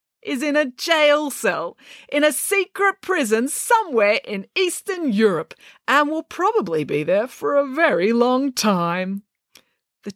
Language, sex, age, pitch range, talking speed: English, female, 30-49, 185-310 Hz, 140 wpm